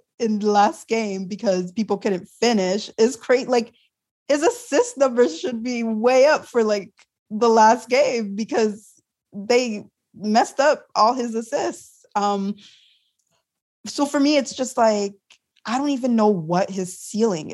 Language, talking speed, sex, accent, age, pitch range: English, 150 wpm, female, American, 20-39, 175-225 Hz